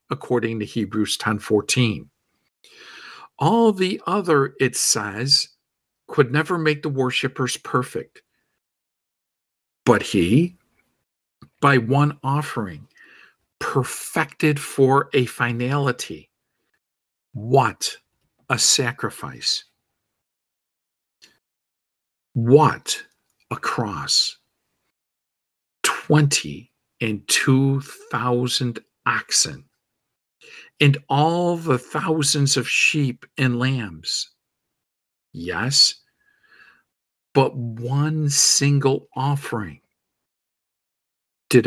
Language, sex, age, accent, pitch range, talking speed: English, male, 50-69, American, 120-150 Hz, 70 wpm